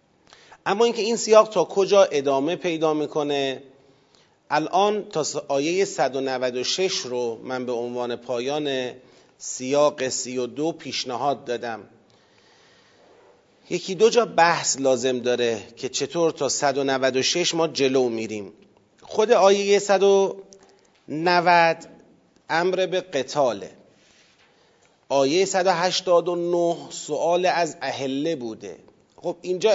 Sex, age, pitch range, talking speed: male, 40-59, 135-190 Hz, 100 wpm